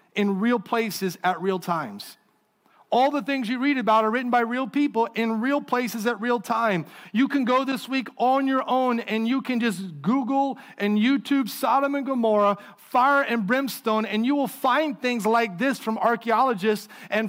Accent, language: American, English